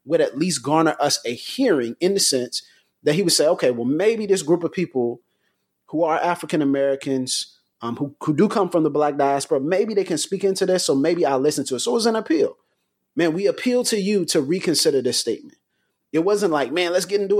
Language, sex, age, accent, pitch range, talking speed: English, male, 30-49, American, 165-235 Hz, 230 wpm